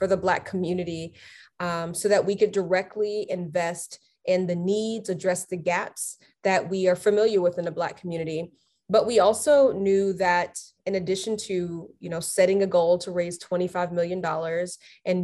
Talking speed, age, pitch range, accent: 165 wpm, 20-39, 175-200 Hz, American